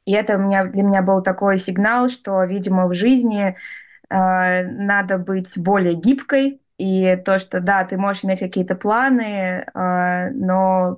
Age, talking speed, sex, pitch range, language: 20-39, 150 wpm, female, 185-225 Hz, Russian